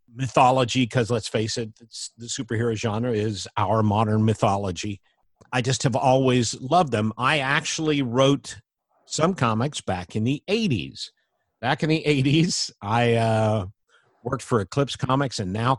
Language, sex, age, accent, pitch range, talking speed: English, male, 50-69, American, 105-135 Hz, 150 wpm